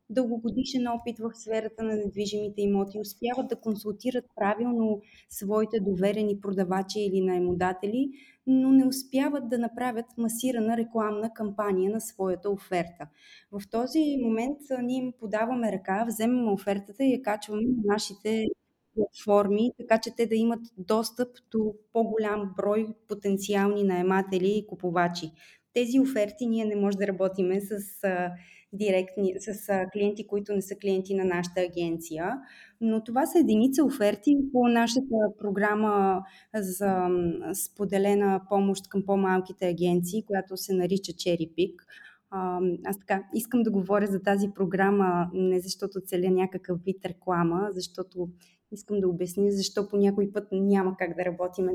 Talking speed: 135 wpm